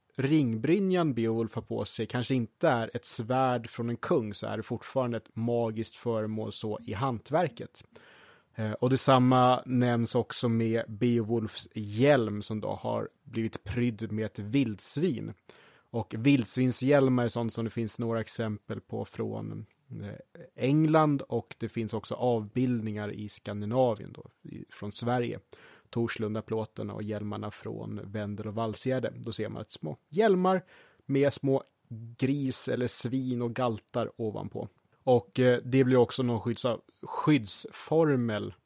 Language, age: Swedish, 30-49